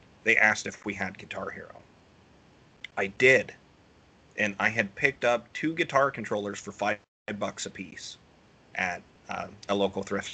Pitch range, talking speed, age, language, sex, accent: 100-115 Hz, 155 wpm, 30-49, English, male, American